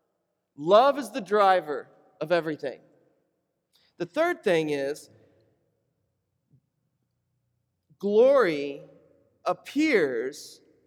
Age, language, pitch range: 40-59, English, 165-215 Hz